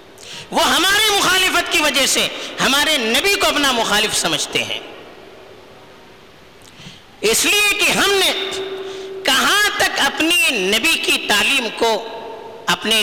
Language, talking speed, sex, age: Urdu, 120 wpm, female, 50-69